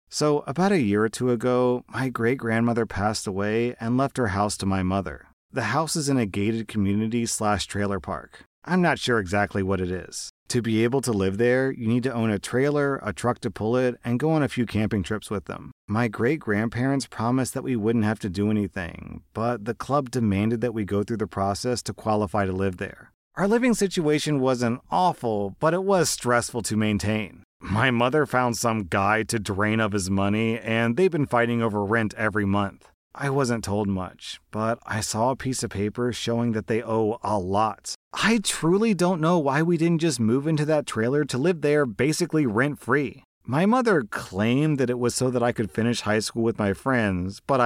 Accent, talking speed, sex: American, 210 wpm, male